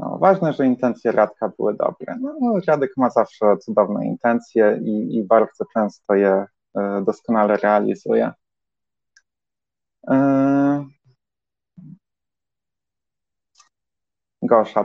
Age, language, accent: 20-39, Polish, native